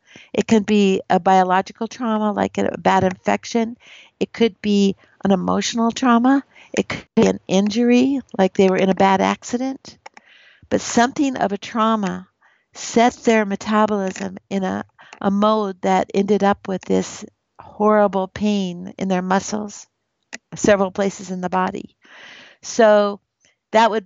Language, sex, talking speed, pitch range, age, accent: Swedish, female, 145 wpm, 195-220 Hz, 60-79, American